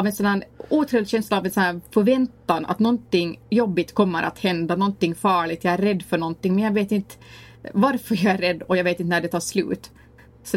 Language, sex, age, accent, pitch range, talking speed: English, female, 30-49, Swedish, 175-215 Hz, 235 wpm